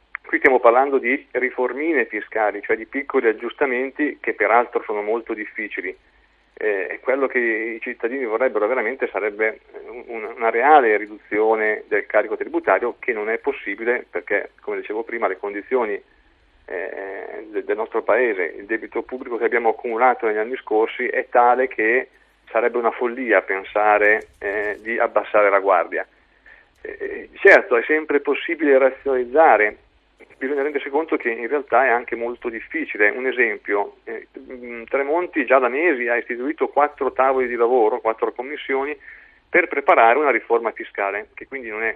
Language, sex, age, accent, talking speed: Italian, male, 40-59, native, 145 wpm